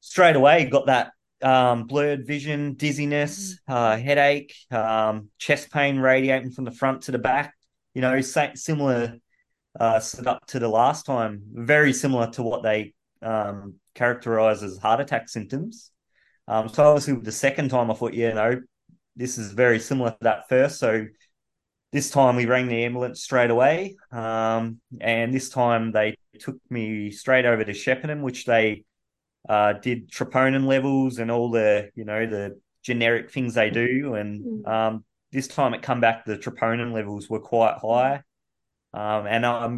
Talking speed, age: 165 wpm, 20-39